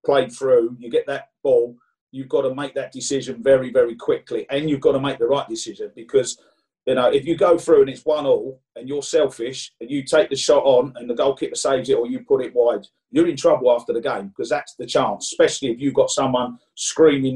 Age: 40-59